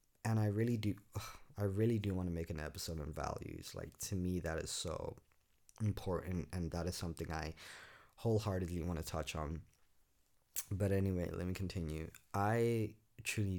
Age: 20-39